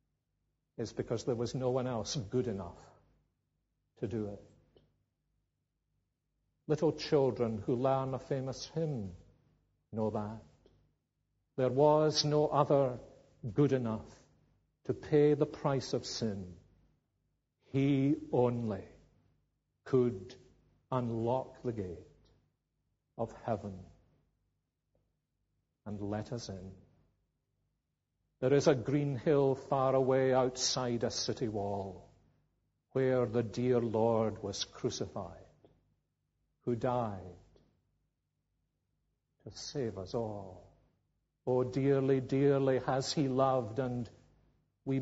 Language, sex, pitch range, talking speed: English, male, 105-135 Hz, 100 wpm